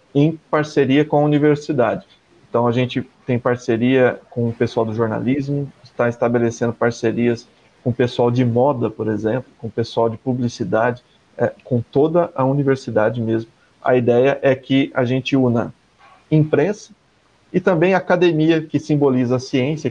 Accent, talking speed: Brazilian, 155 wpm